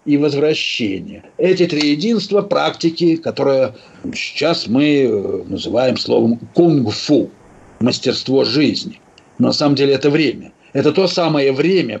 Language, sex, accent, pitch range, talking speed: Russian, male, native, 150-195 Hz, 115 wpm